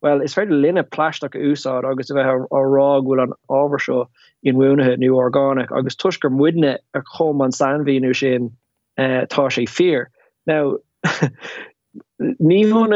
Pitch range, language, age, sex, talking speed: 135-165 Hz, English, 20-39, male, 160 wpm